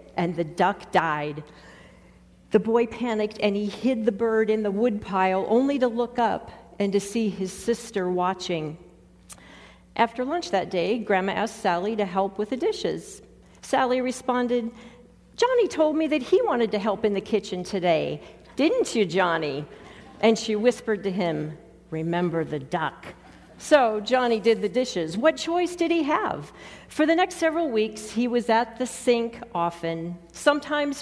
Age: 50-69